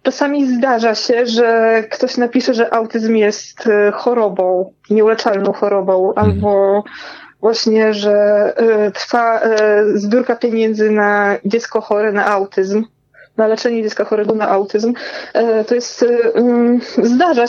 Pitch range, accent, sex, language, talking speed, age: 225-260 Hz, native, female, Polish, 110 wpm, 20-39